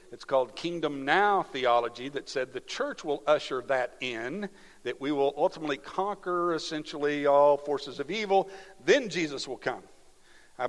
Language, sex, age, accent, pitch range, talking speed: English, male, 50-69, American, 135-175 Hz, 155 wpm